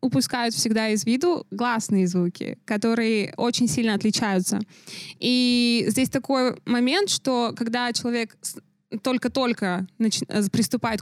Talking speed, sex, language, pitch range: 105 wpm, female, Russian, 200-245 Hz